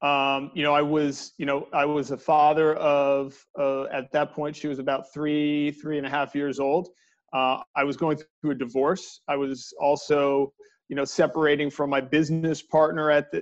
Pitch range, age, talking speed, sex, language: 145-180 Hz, 40-59, 195 wpm, male, English